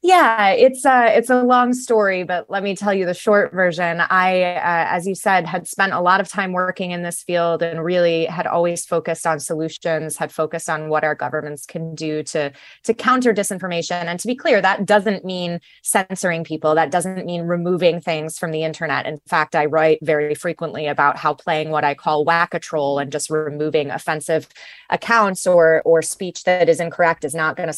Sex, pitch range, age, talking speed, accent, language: female, 155-185 Hz, 20-39, 205 wpm, American, English